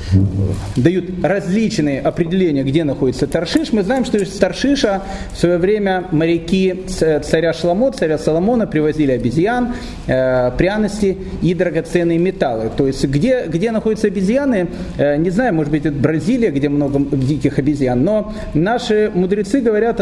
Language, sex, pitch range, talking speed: Russian, male, 150-205 Hz, 135 wpm